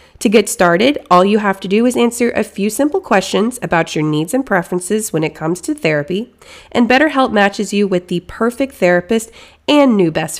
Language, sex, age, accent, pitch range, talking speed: English, female, 20-39, American, 185-260 Hz, 200 wpm